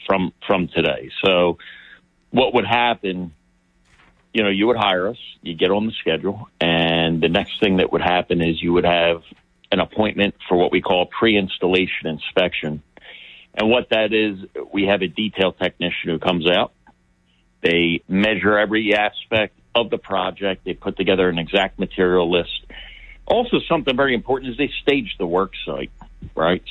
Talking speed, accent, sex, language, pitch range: 165 wpm, American, male, English, 90-115 Hz